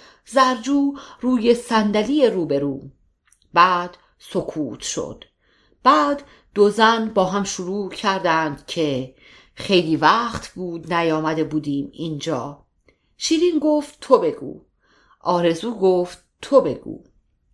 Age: 50-69